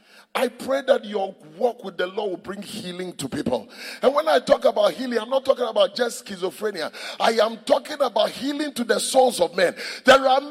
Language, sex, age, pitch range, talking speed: English, male, 30-49, 215-275 Hz, 210 wpm